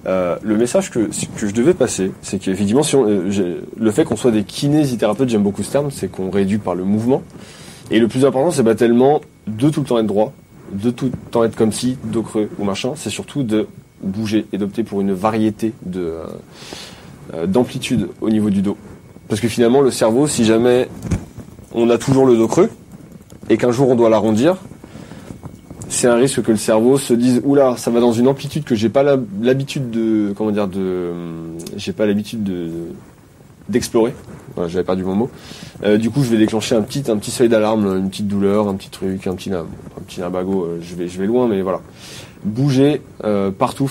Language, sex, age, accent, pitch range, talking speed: French, male, 20-39, French, 100-125 Hz, 210 wpm